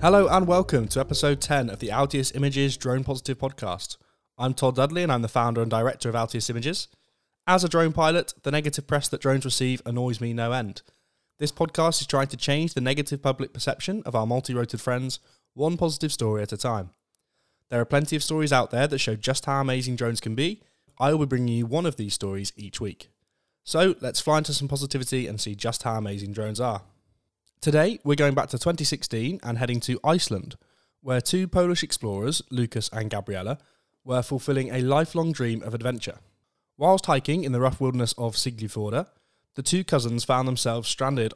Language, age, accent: English, 10-29, British